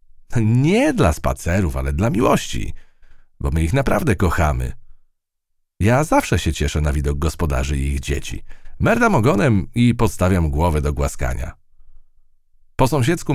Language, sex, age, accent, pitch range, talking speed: Polish, male, 40-59, native, 75-115 Hz, 135 wpm